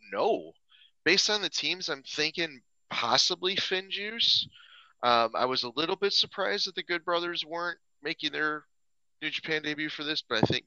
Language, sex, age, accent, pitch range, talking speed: English, male, 30-49, American, 105-160 Hz, 180 wpm